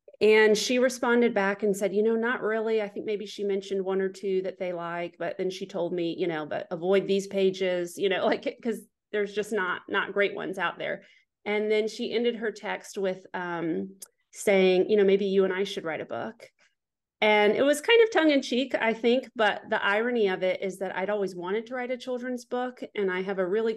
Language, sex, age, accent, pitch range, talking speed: English, female, 30-49, American, 185-215 Hz, 235 wpm